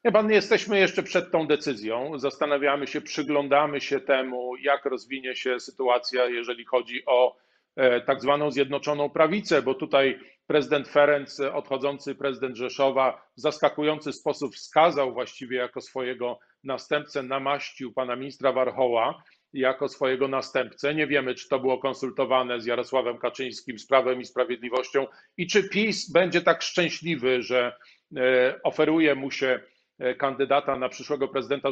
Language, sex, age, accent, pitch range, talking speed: Polish, male, 40-59, native, 130-155 Hz, 135 wpm